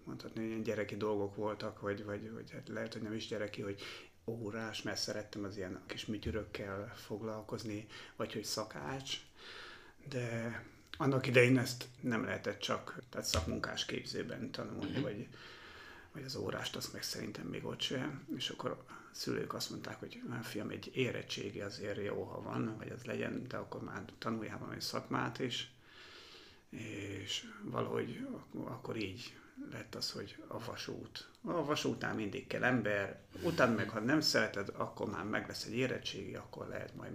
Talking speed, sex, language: 160 wpm, male, Hungarian